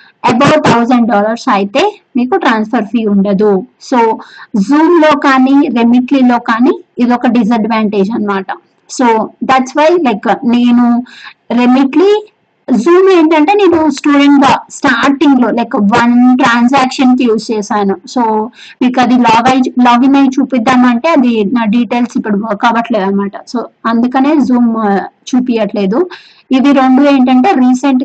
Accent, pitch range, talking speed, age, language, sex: native, 225-270 Hz, 130 wpm, 20-39, Telugu, female